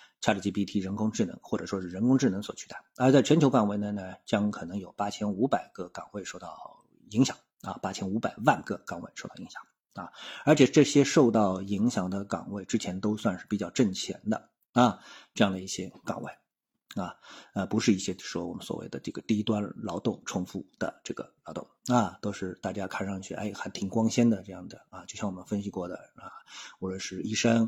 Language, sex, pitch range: Chinese, male, 100-115 Hz